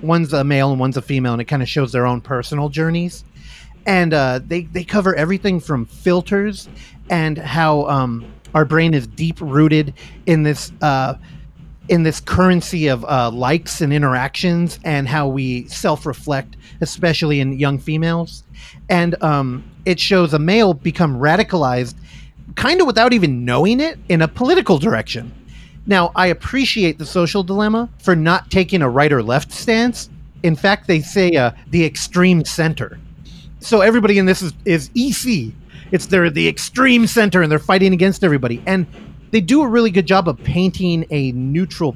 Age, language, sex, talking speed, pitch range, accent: 30-49, English, male, 170 wpm, 145-185 Hz, American